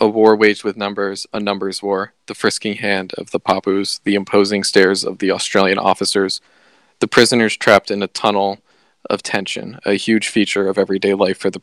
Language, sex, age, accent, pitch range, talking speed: English, male, 20-39, American, 95-105 Hz, 190 wpm